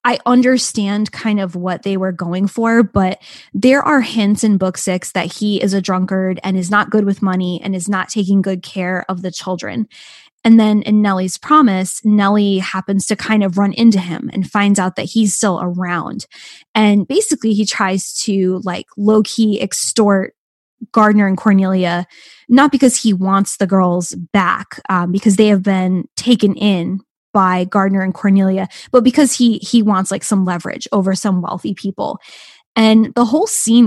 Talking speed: 180 wpm